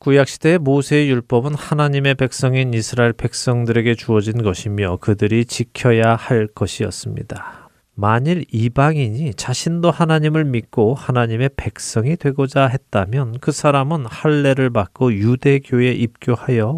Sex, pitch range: male, 110-140 Hz